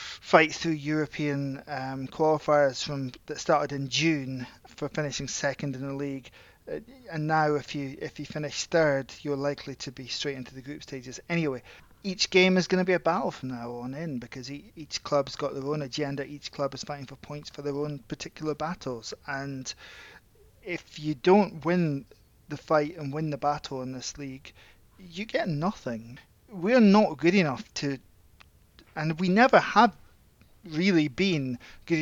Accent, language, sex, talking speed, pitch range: British, English, male, 175 wpm, 135-165 Hz